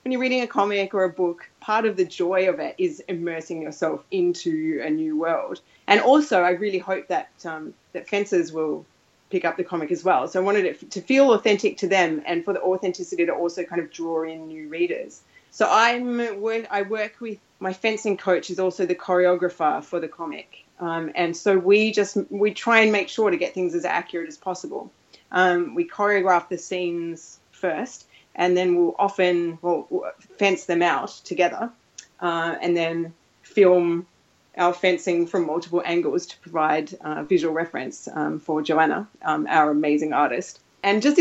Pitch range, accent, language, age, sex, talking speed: 170-210 Hz, Australian, English, 30-49, female, 190 wpm